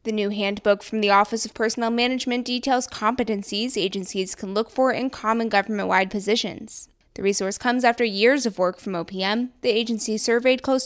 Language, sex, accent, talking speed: English, female, American, 175 wpm